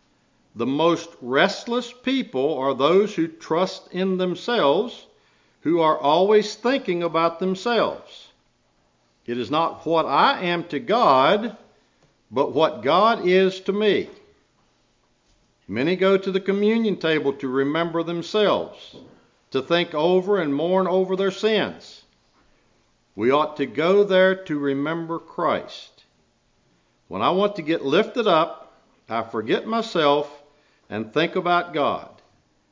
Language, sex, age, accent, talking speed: English, male, 60-79, American, 125 wpm